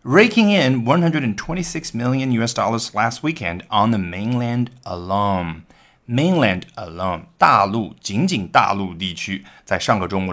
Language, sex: Chinese, male